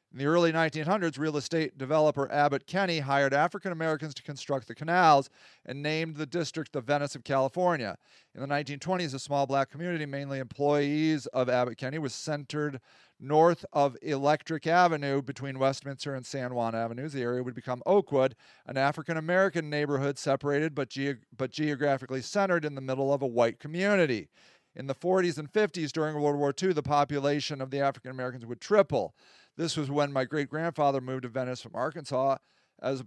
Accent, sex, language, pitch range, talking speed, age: American, male, English, 135-165 Hz, 175 wpm, 40-59